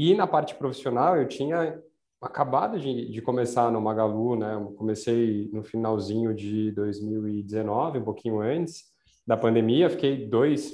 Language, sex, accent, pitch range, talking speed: Portuguese, male, Brazilian, 115-135 Hz, 145 wpm